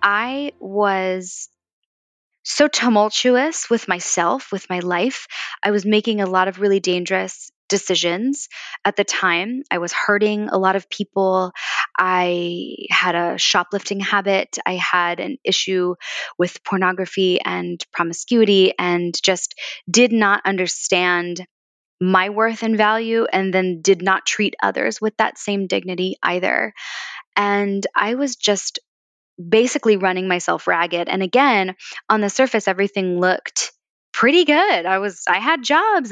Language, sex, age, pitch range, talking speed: English, female, 20-39, 180-210 Hz, 140 wpm